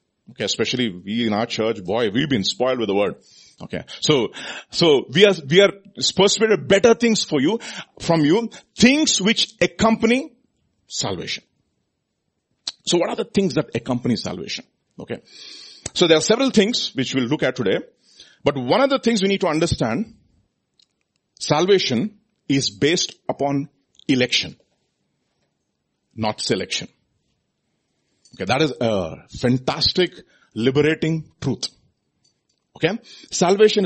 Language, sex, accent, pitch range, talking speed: English, male, Indian, 130-200 Hz, 135 wpm